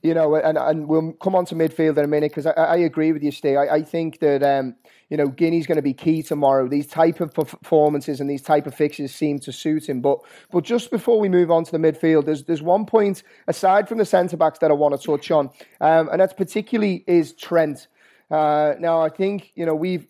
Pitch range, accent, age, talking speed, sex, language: 145-170 Hz, British, 30-49, 245 wpm, male, English